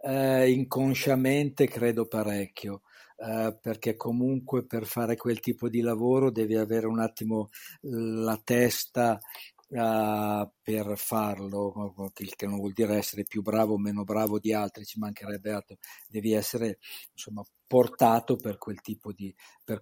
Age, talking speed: 50-69, 115 wpm